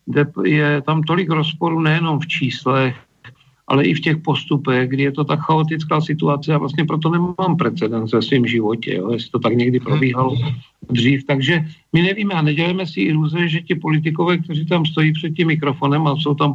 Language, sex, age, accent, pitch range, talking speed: Czech, male, 50-69, native, 135-155 Hz, 185 wpm